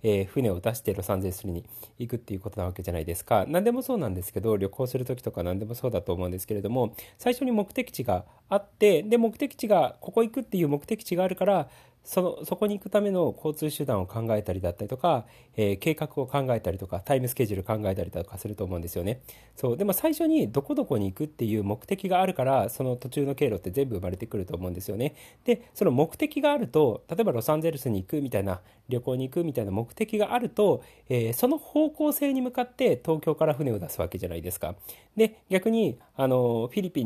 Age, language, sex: 40-59, Japanese, male